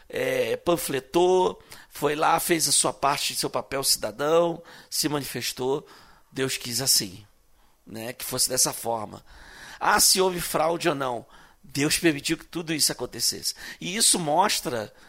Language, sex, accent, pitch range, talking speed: Portuguese, male, Brazilian, 115-155 Hz, 145 wpm